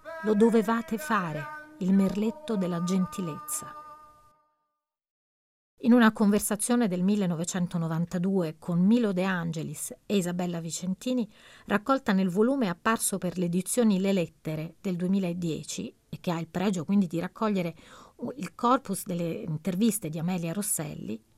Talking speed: 125 wpm